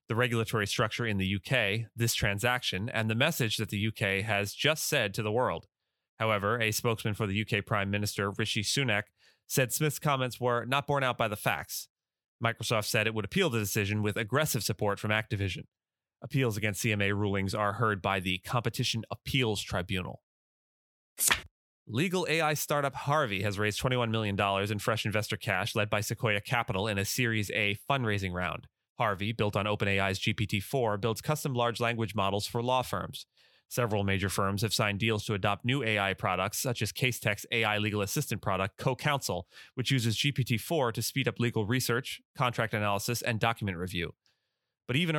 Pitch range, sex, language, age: 100-120 Hz, male, English, 30-49